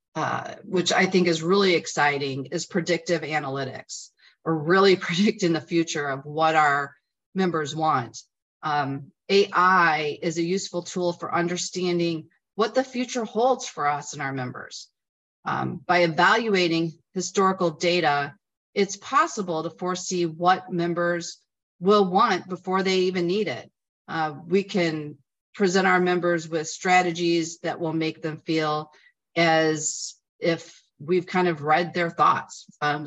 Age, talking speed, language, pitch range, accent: 40-59, 140 wpm, English, 155-185 Hz, American